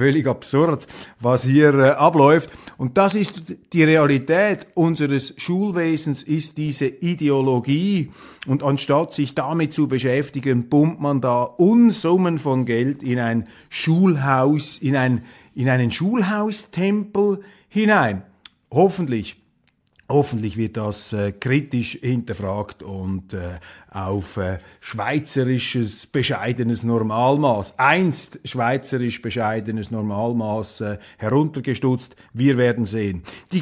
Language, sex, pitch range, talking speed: German, male, 120-155 Hz, 110 wpm